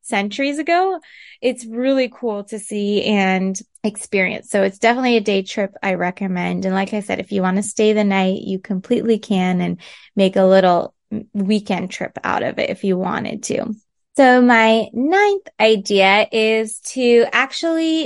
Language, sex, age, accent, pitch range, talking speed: English, female, 20-39, American, 195-235 Hz, 170 wpm